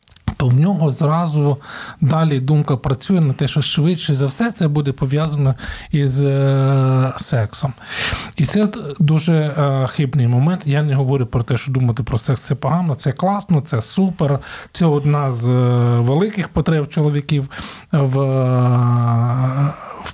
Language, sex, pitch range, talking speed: Ukrainian, male, 125-150 Hz, 140 wpm